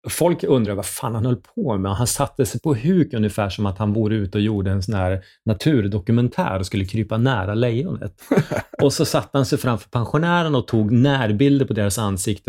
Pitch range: 95-125 Hz